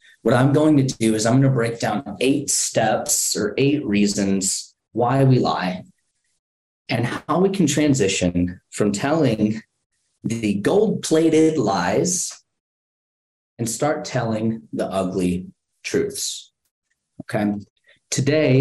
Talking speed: 115 wpm